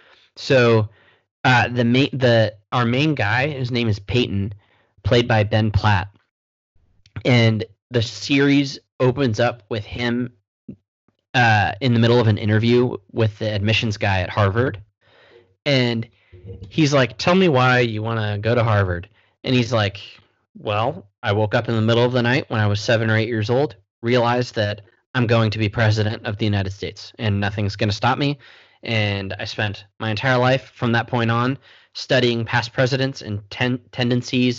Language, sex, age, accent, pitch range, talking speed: English, male, 20-39, American, 105-125 Hz, 175 wpm